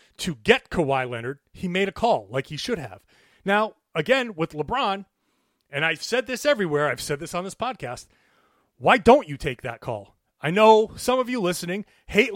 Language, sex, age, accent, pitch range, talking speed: English, male, 30-49, American, 150-220 Hz, 195 wpm